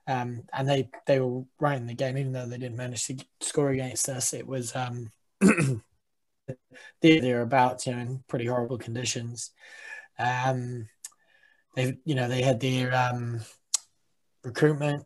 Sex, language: male, English